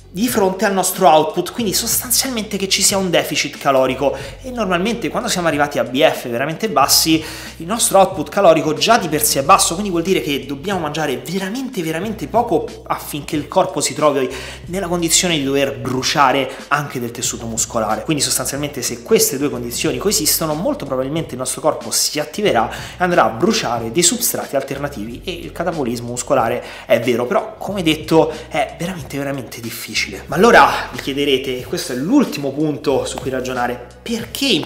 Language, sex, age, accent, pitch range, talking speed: Italian, male, 30-49, native, 130-170 Hz, 180 wpm